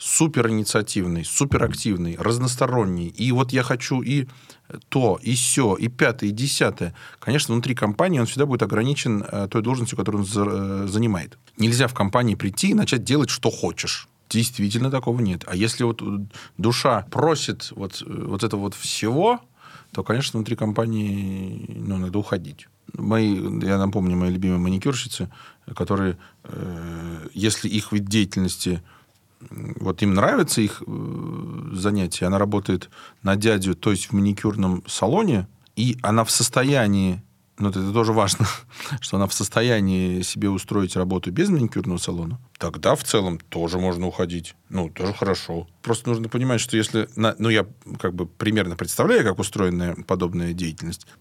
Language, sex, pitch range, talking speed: Russian, male, 95-120 Hz, 140 wpm